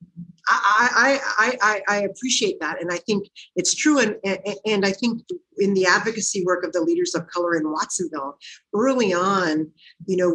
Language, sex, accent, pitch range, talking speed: English, female, American, 175-225 Hz, 180 wpm